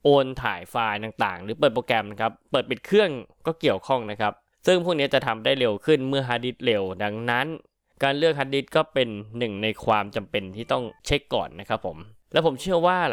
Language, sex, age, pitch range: Thai, male, 20-39, 105-140 Hz